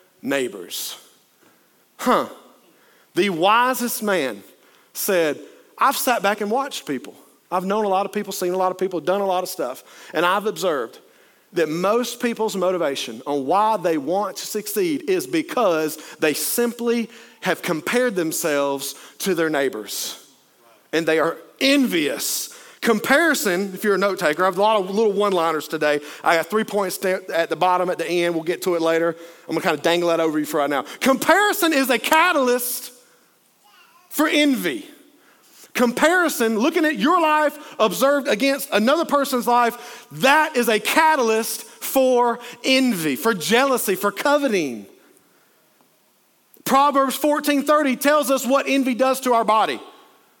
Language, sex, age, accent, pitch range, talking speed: English, male, 40-59, American, 185-280 Hz, 155 wpm